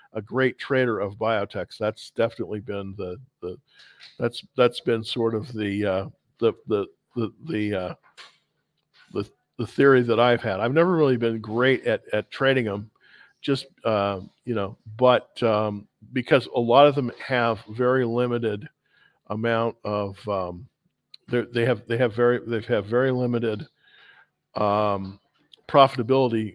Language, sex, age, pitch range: English, male, 50-69, 110-130 Hz